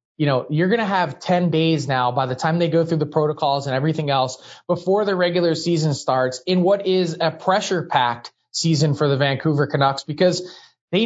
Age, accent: 20-39, American